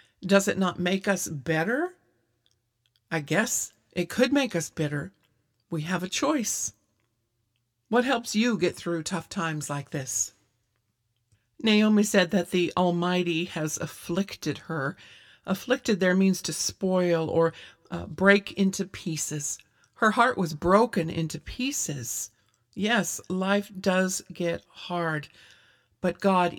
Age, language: 50-69, English